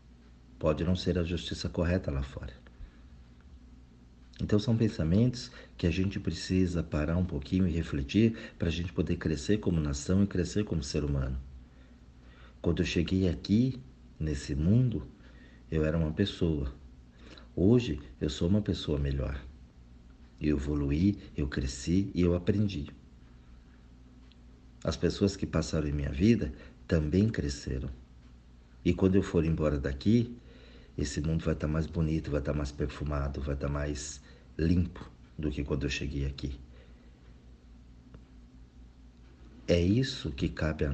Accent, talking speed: Brazilian, 140 wpm